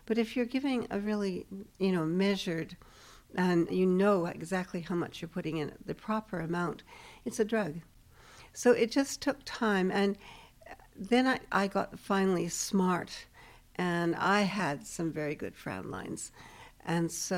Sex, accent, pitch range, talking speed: female, American, 160-200 Hz, 160 wpm